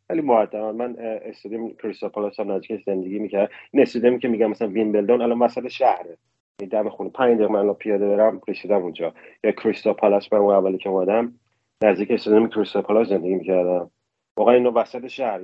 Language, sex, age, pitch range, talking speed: Persian, male, 30-49, 100-120 Hz, 160 wpm